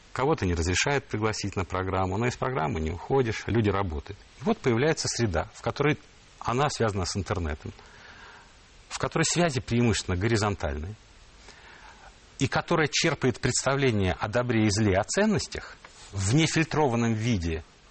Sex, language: male, Russian